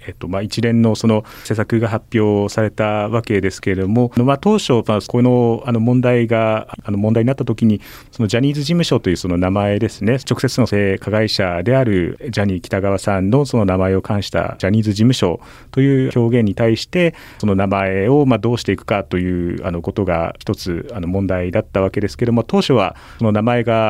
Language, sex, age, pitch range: Japanese, male, 40-59, 95-120 Hz